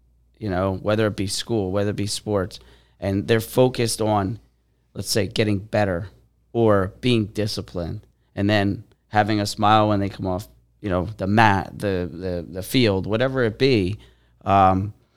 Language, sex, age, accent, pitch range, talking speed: English, male, 30-49, American, 95-115 Hz, 165 wpm